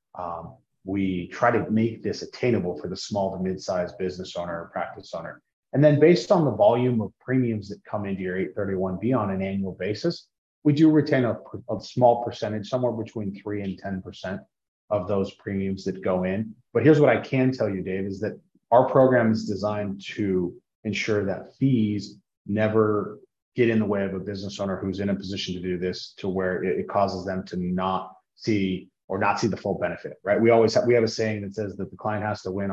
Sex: male